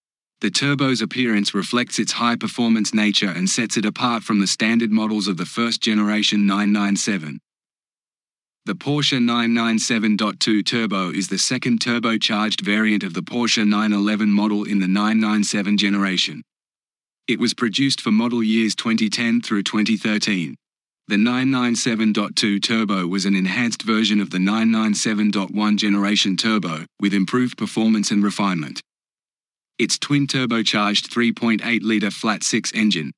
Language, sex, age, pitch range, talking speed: English, male, 30-49, 105-115 Hz, 120 wpm